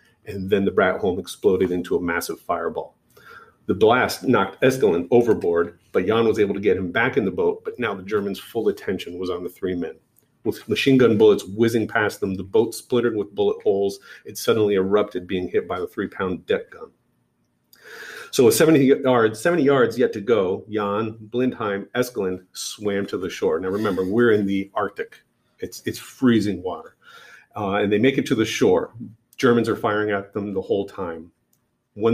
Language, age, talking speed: English, 40-59, 190 wpm